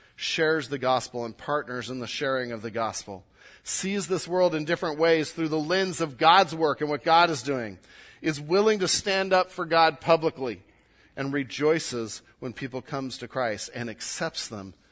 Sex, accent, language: male, American, English